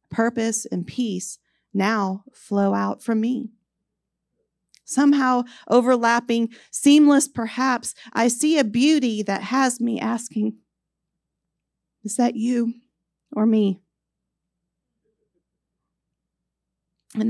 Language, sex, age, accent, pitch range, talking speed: English, female, 40-59, American, 180-235 Hz, 90 wpm